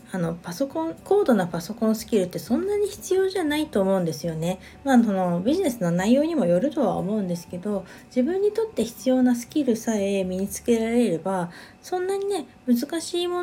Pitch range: 180-255 Hz